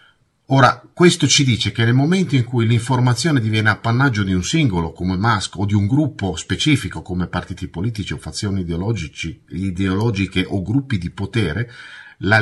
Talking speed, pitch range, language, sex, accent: 165 wpm, 90-125 Hz, Italian, male, native